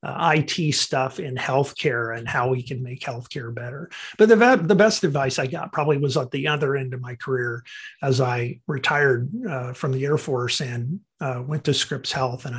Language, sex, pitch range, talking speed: English, male, 130-155 Hz, 205 wpm